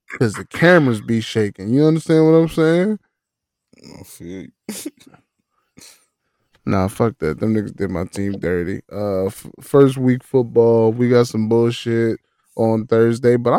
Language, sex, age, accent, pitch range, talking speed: English, male, 10-29, American, 115-140 Hz, 135 wpm